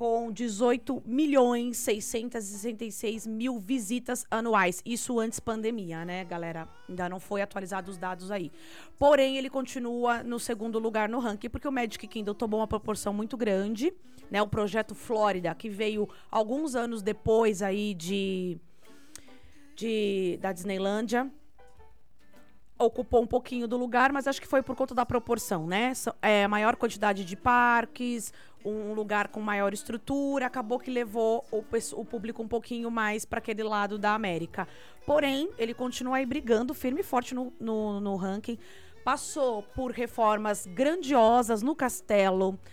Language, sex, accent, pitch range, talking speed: Portuguese, female, Brazilian, 205-245 Hz, 150 wpm